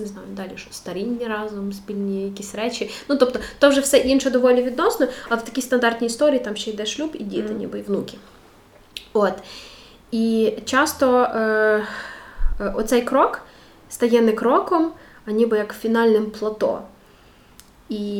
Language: Ukrainian